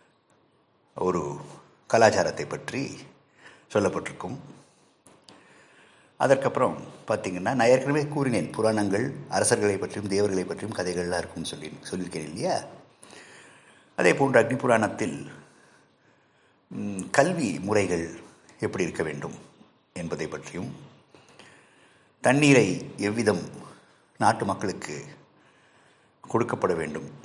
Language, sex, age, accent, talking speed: Tamil, male, 50-69, native, 80 wpm